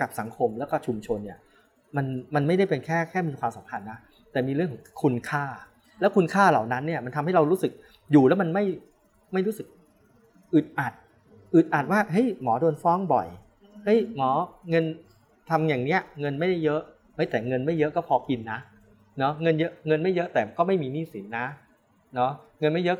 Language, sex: English, male